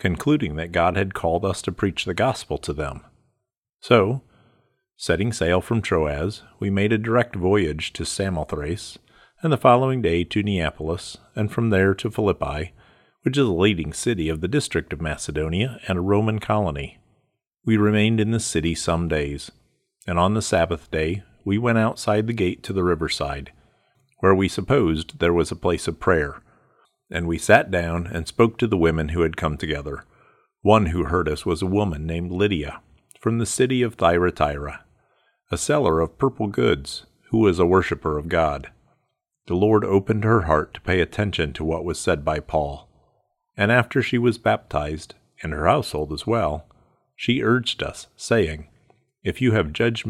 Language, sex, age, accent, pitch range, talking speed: English, male, 50-69, American, 80-110 Hz, 175 wpm